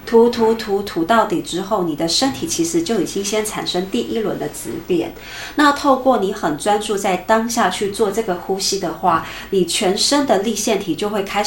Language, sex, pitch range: Chinese, female, 180-240 Hz